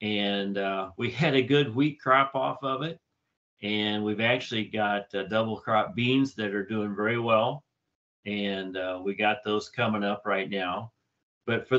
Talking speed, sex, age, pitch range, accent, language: 180 wpm, male, 40-59, 100-125 Hz, American, English